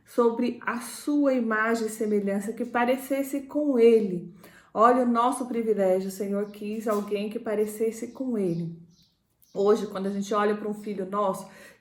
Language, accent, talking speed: Portuguese, Brazilian, 165 wpm